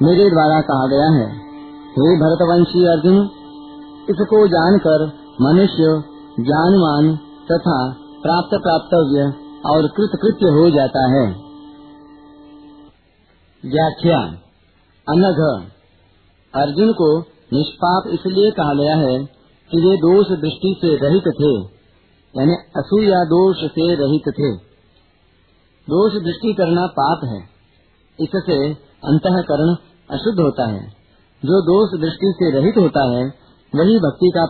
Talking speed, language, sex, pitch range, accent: 110 wpm, Hindi, male, 140-175 Hz, native